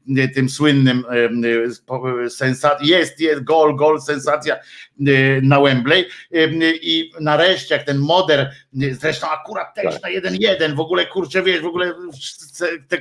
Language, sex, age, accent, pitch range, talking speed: Polish, male, 50-69, native, 135-175 Hz, 125 wpm